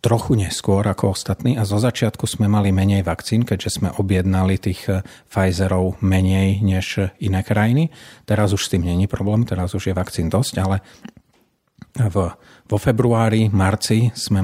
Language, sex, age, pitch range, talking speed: Slovak, male, 40-59, 95-110 Hz, 150 wpm